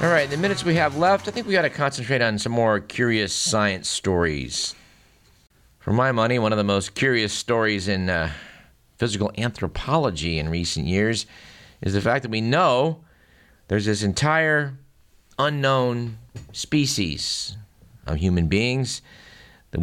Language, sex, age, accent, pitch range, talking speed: English, male, 50-69, American, 95-125 Hz, 150 wpm